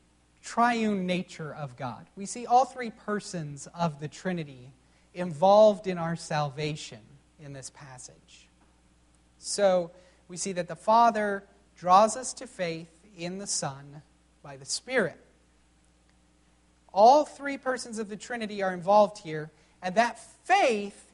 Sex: male